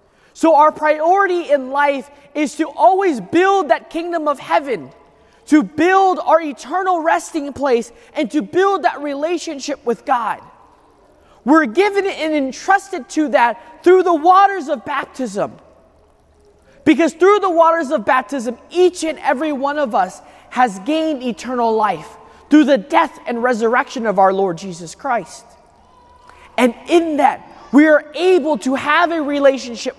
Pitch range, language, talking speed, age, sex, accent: 245-330 Hz, English, 145 wpm, 20-39, male, American